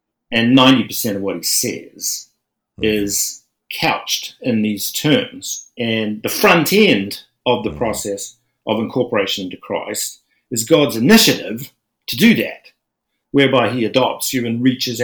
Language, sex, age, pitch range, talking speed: English, male, 50-69, 115-160 Hz, 135 wpm